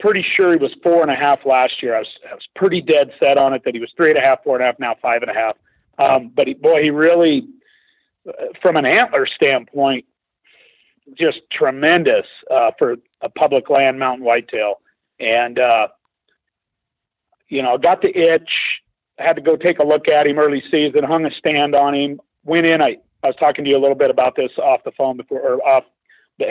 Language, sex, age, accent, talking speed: English, male, 50-69, American, 215 wpm